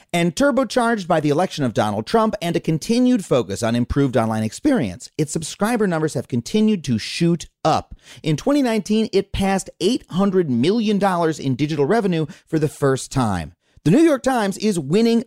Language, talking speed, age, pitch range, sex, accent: English, 170 wpm, 30-49, 125-205 Hz, male, American